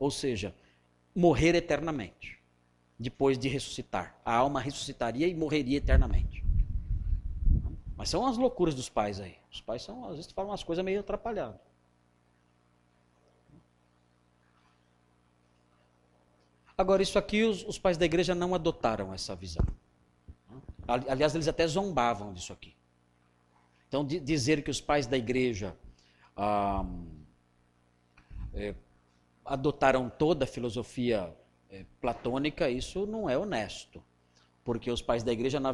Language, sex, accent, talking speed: Portuguese, male, Brazilian, 120 wpm